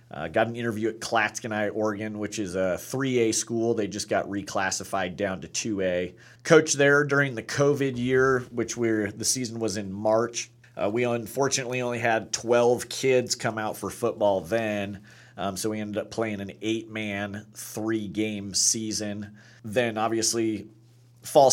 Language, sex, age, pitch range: English, male, 30-49, 105-120 Hz